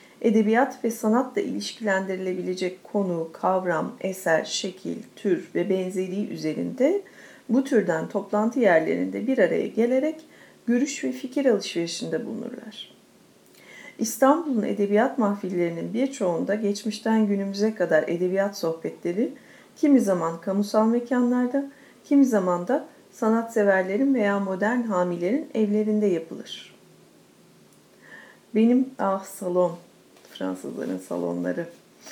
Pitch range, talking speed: 185-245 Hz, 95 wpm